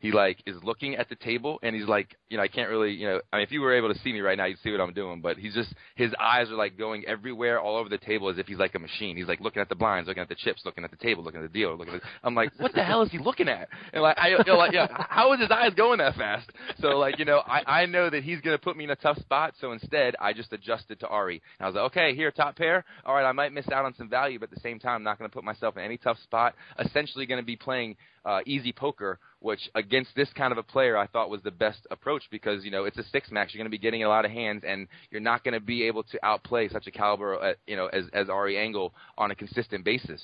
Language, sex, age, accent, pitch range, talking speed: English, male, 20-39, American, 105-140 Hz, 315 wpm